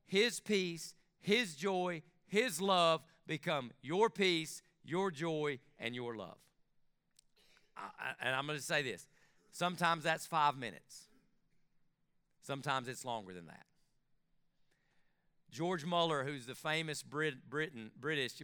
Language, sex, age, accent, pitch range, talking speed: English, male, 40-59, American, 130-175 Hz, 115 wpm